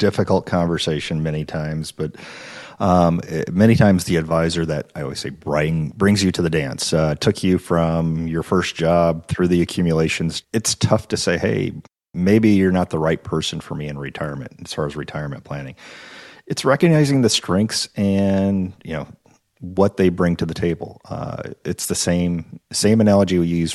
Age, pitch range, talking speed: 40-59, 80-100 Hz, 175 wpm